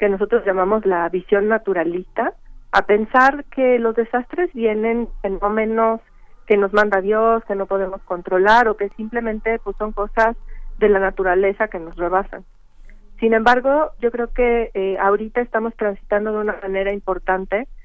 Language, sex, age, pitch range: Spanish, female, 40-59, 200-245 Hz